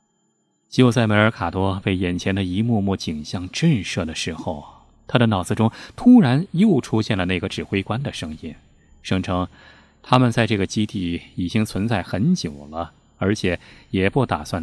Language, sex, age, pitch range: Chinese, male, 20-39, 90-125 Hz